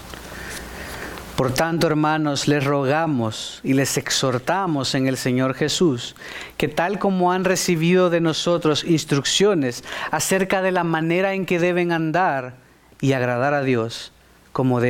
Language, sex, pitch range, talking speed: English, male, 140-190 Hz, 135 wpm